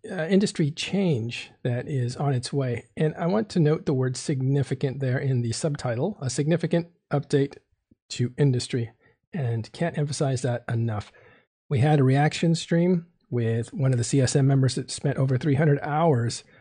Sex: male